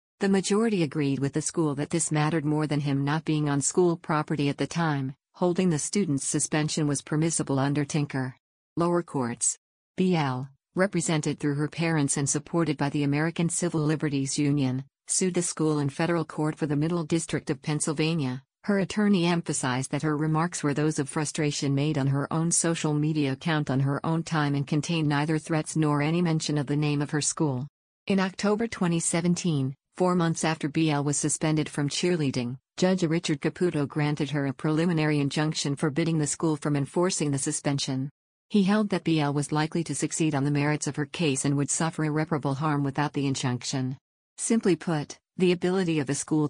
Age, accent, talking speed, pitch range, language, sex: 50-69, American, 185 wpm, 145-165 Hz, English, female